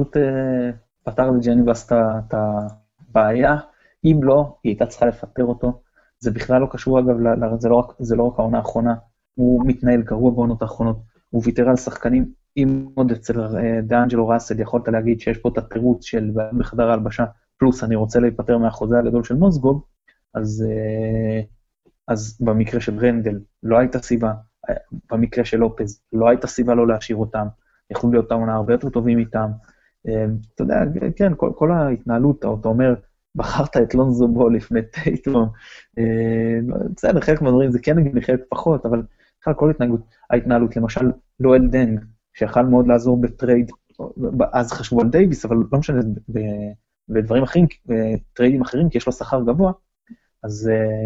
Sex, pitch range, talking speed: male, 110-125 Hz, 155 wpm